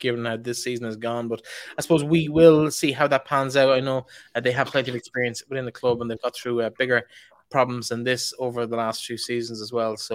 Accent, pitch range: Irish, 115-135 Hz